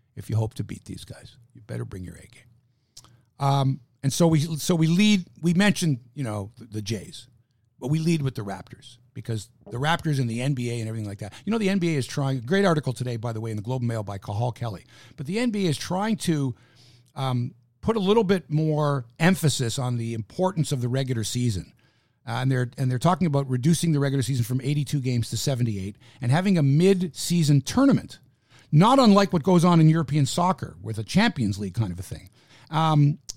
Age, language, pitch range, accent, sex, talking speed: 50-69, English, 125-180 Hz, American, male, 220 wpm